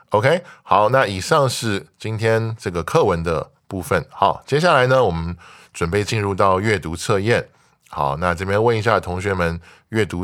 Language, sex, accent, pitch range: Chinese, male, American, 85-110 Hz